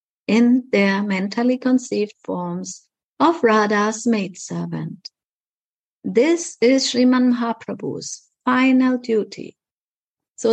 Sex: female